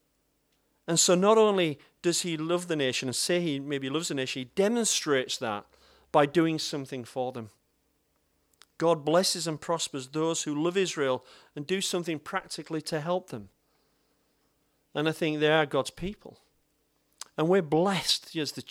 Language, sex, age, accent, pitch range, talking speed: English, male, 40-59, British, 140-180 Hz, 165 wpm